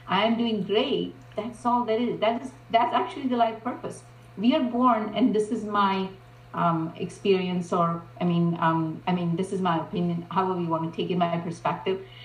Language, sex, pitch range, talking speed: English, female, 185-225 Hz, 195 wpm